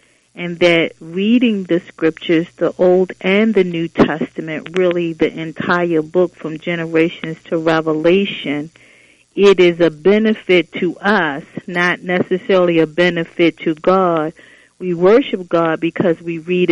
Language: English